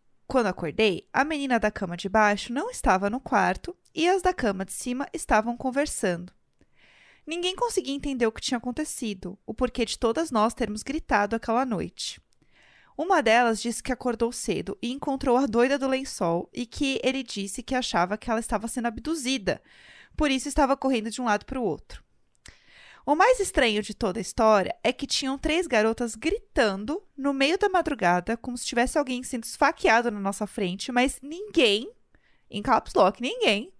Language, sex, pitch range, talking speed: Portuguese, female, 220-290 Hz, 180 wpm